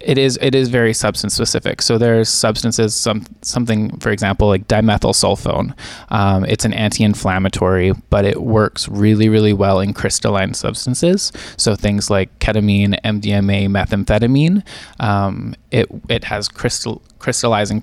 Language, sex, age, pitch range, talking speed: English, male, 20-39, 100-115 Hz, 140 wpm